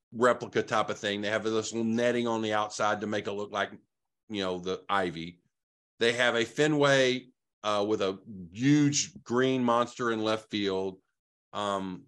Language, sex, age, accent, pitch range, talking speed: English, male, 40-59, American, 110-180 Hz, 175 wpm